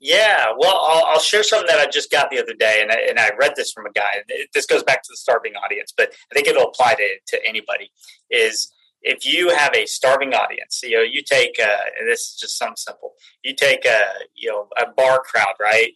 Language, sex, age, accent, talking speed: English, male, 30-49, American, 245 wpm